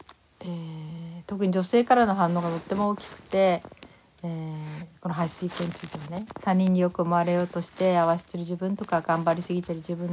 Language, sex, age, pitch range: Japanese, female, 60-79, 170-215 Hz